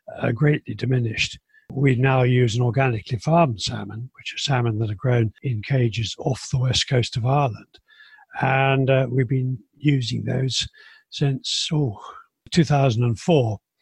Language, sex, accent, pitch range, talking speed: English, male, British, 120-140 Hz, 135 wpm